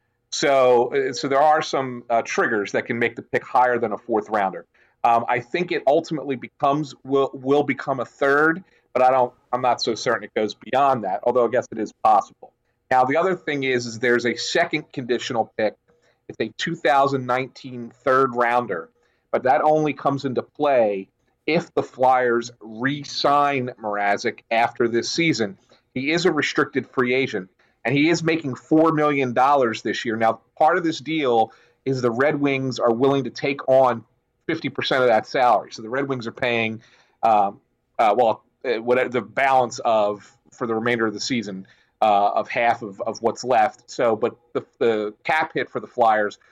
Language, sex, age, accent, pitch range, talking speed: English, male, 40-59, American, 115-140 Hz, 185 wpm